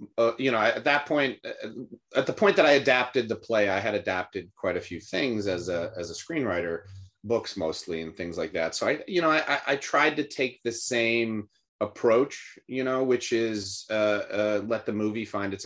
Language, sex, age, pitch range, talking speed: English, male, 30-49, 100-130 Hz, 210 wpm